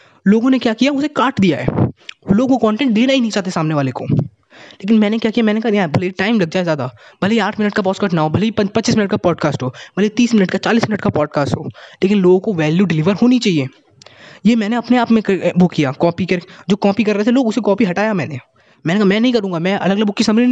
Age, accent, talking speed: 20-39, native, 270 wpm